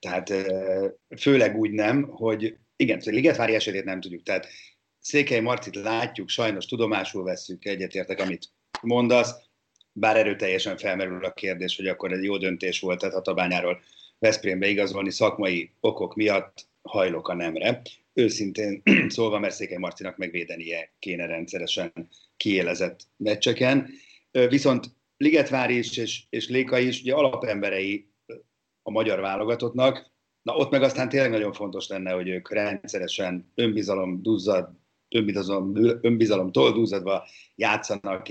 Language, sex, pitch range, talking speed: Hungarian, male, 95-125 Hz, 125 wpm